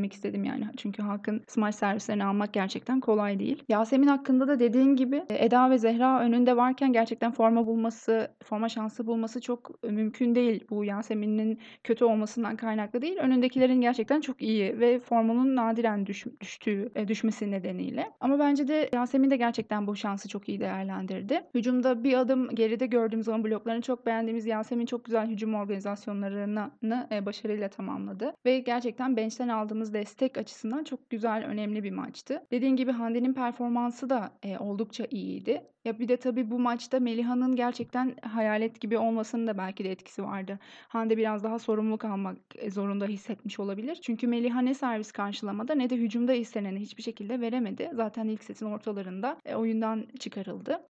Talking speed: 160 wpm